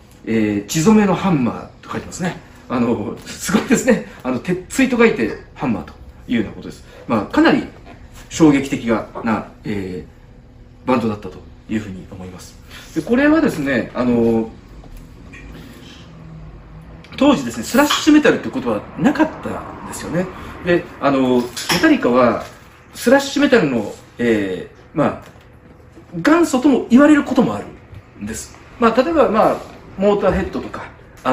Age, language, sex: 40-59, Japanese, male